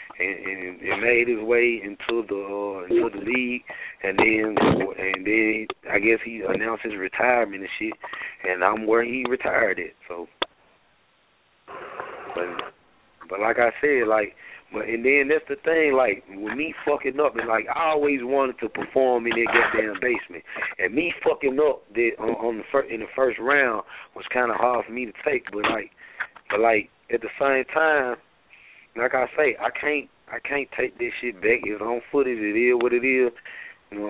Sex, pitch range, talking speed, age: male, 110-135 Hz, 190 wpm, 30-49